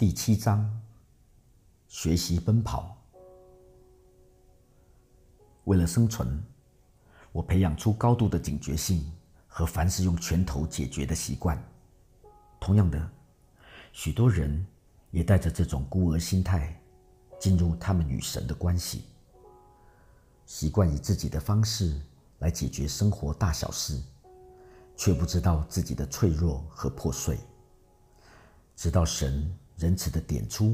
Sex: male